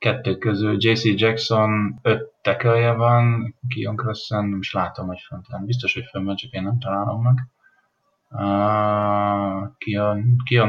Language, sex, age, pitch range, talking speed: Hungarian, male, 20-39, 100-115 Hz, 130 wpm